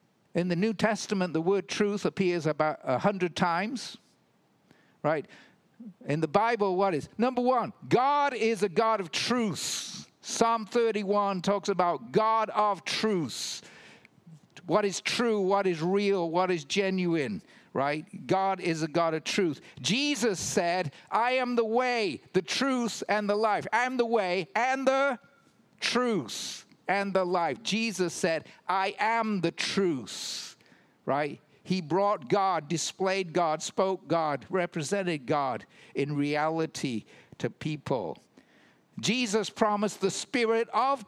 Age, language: 50-69, English